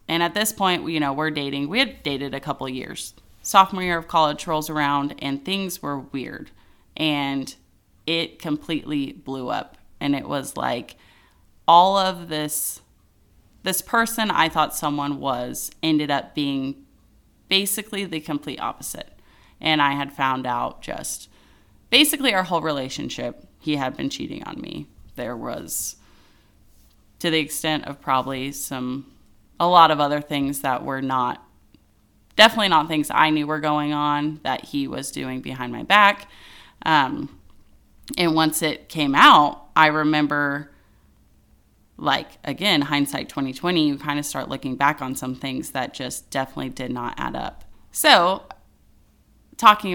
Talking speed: 155 wpm